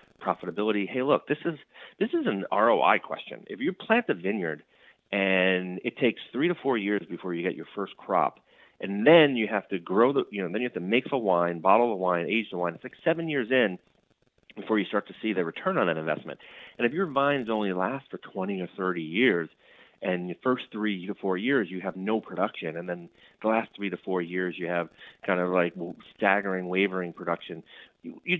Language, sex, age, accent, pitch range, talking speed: English, male, 30-49, American, 95-130 Hz, 220 wpm